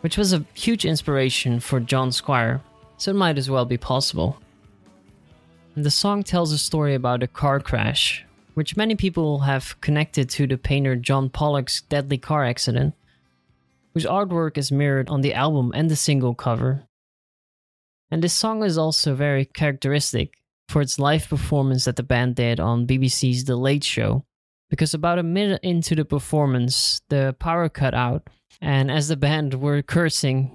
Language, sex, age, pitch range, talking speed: English, male, 20-39, 125-150 Hz, 170 wpm